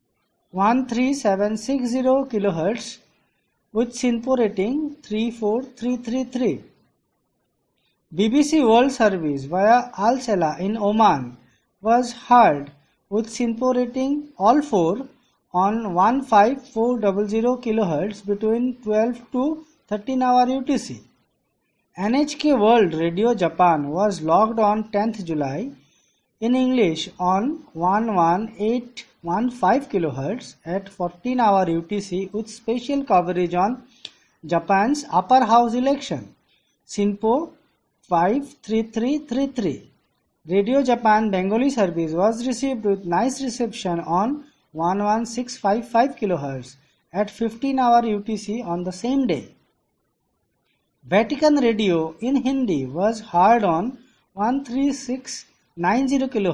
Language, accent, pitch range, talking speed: English, Indian, 195-255 Hz, 100 wpm